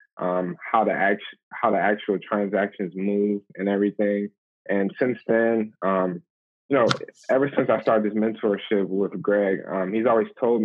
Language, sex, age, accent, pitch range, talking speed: English, male, 20-39, American, 95-105 Hz, 165 wpm